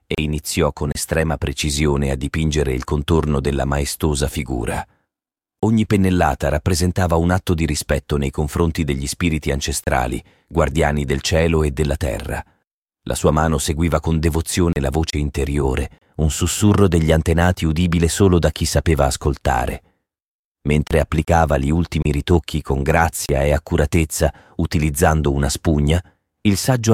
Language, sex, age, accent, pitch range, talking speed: Italian, male, 40-59, native, 75-90 Hz, 140 wpm